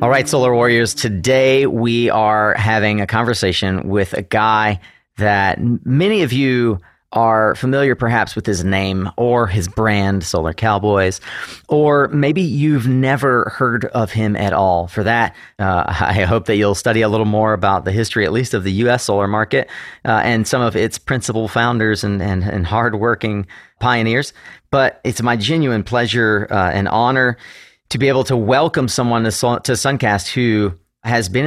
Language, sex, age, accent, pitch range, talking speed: English, male, 30-49, American, 100-125 Hz, 175 wpm